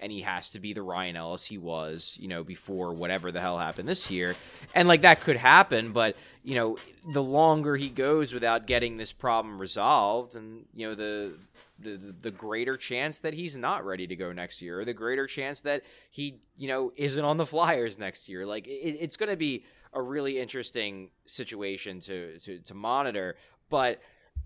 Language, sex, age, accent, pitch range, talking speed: English, male, 20-39, American, 110-155 Hz, 200 wpm